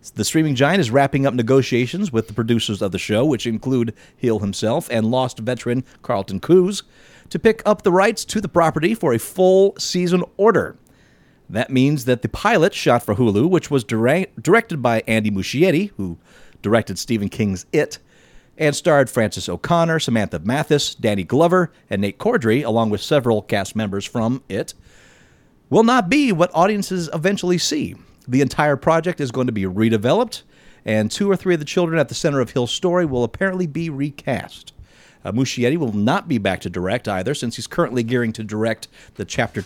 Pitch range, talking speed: 115-175 Hz, 185 wpm